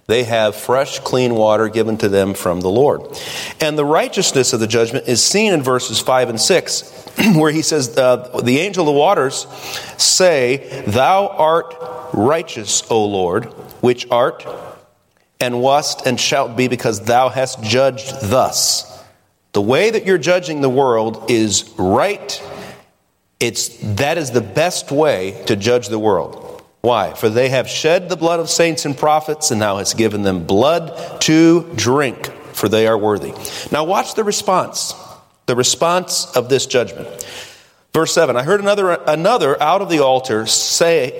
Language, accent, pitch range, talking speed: English, American, 115-170 Hz, 165 wpm